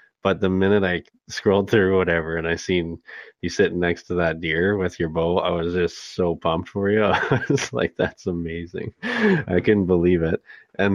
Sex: male